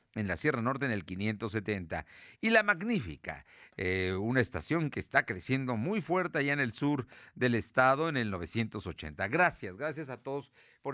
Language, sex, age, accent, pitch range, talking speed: Spanish, male, 50-69, Mexican, 95-145 Hz, 175 wpm